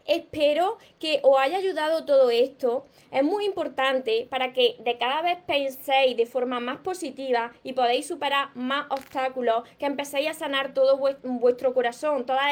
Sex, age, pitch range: female, 20-39, 260-300 Hz